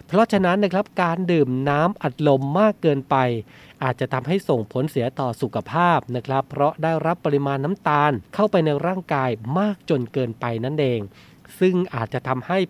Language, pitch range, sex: Thai, 130-175 Hz, male